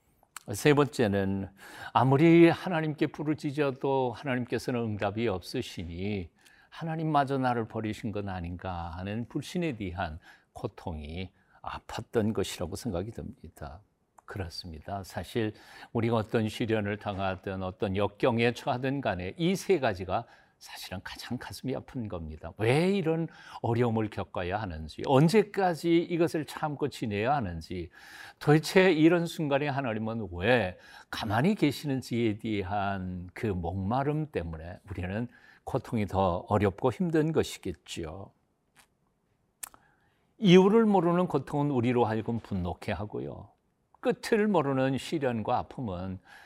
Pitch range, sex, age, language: 100-145 Hz, male, 50-69, Korean